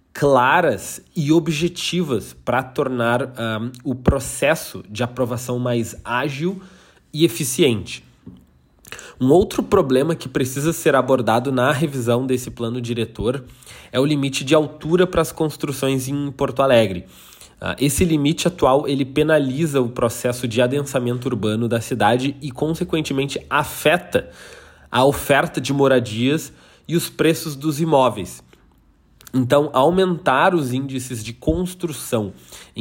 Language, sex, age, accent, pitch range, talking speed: Portuguese, male, 20-39, Brazilian, 125-165 Hz, 125 wpm